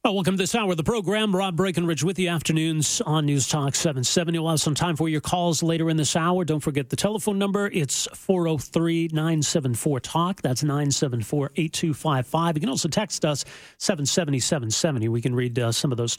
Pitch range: 135-185 Hz